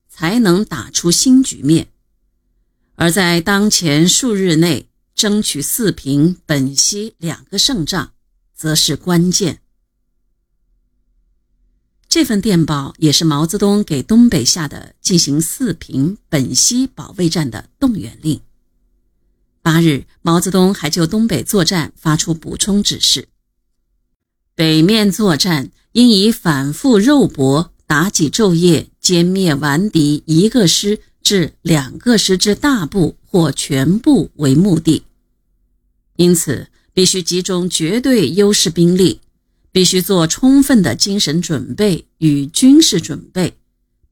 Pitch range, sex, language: 150-205 Hz, female, Chinese